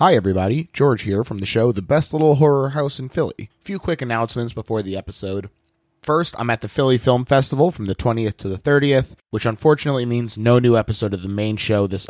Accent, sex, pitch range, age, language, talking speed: American, male, 105-135 Hz, 30-49, English, 225 wpm